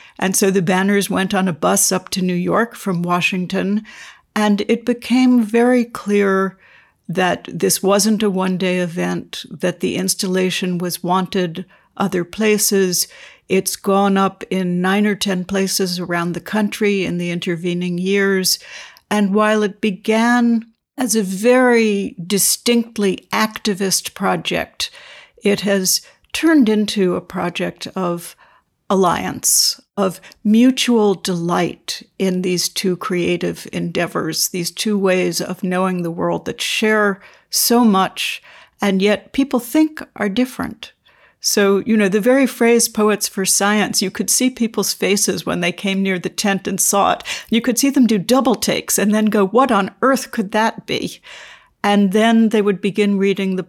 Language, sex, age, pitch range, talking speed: English, female, 60-79, 185-220 Hz, 150 wpm